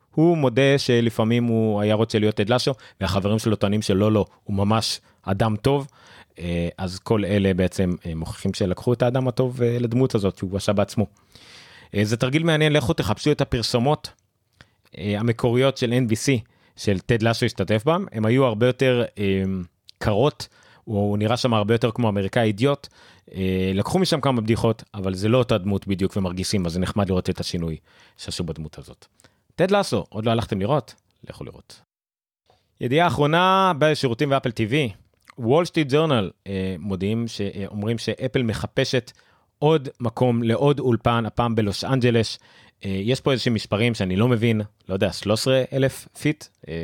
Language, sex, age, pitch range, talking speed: Hebrew, male, 30-49, 100-125 Hz, 160 wpm